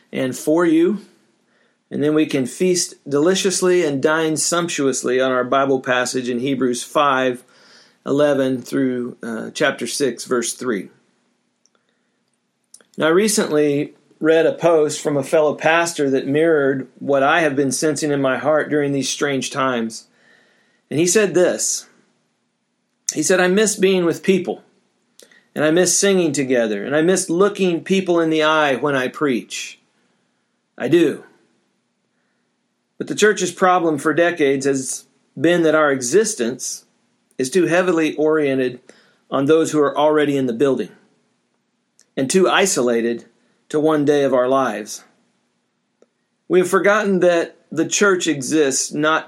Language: English